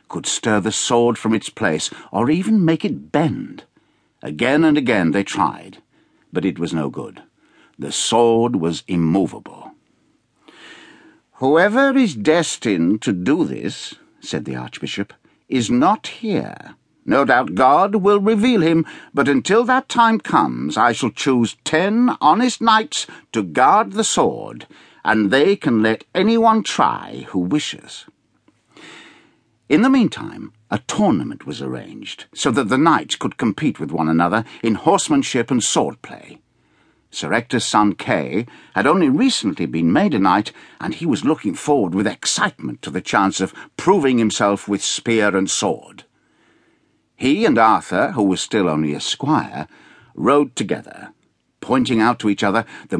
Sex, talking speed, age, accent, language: male, 150 wpm, 60-79, British, English